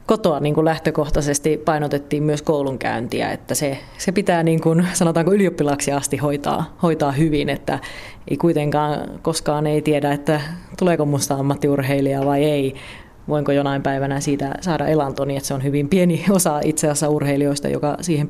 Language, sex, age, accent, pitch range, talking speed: Finnish, female, 30-49, native, 140-175 Hz, 150 wpm